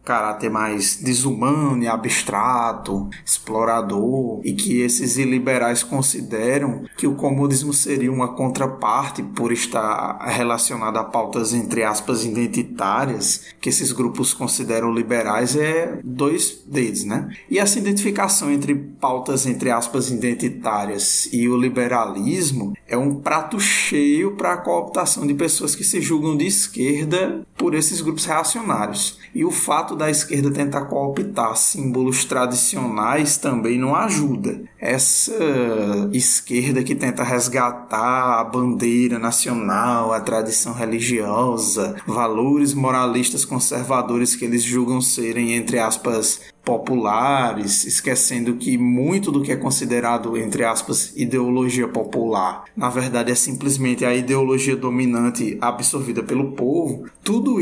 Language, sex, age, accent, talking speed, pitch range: Portuguese, male, 20-39, Brazilian, 125 wpm, 120-140 Hz